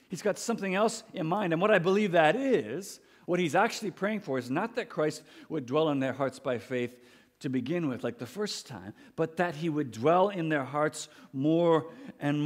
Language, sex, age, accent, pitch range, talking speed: English, male, 50-69, American, 145-190 Hz, 215 wpm